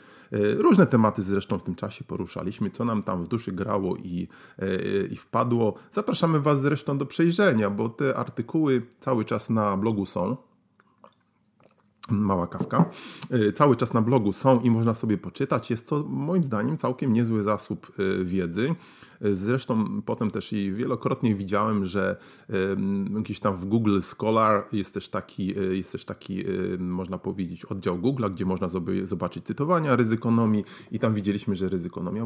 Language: Polish